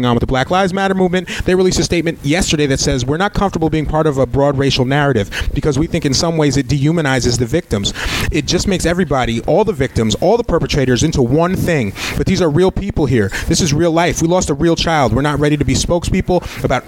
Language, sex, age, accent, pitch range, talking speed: English, male, 30-49, American, 130-170 Hz, 245 wpm